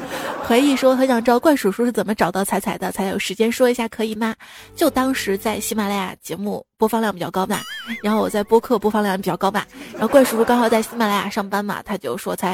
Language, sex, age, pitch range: Chinese, female, 20-39, 210-260 Hz